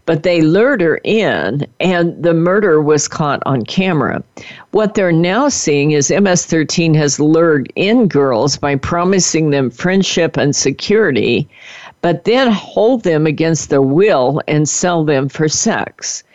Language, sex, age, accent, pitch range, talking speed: English, female, 50-69, American, 145-195 Hz, 145 wpm